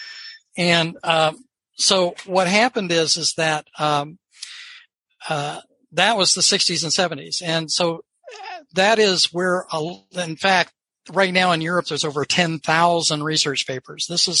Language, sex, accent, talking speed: English, male, American, 145 wpm